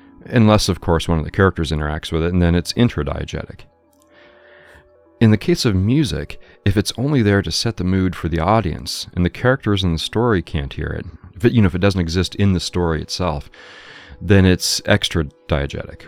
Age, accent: 40-59, American